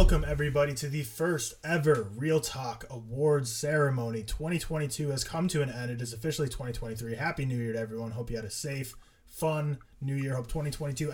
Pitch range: 125-160 Hz